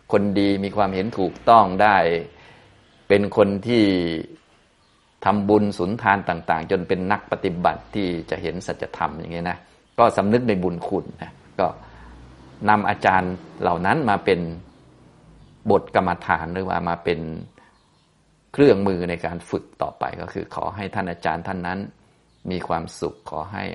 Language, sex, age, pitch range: Thai, male, 20-39, 85-105 Hz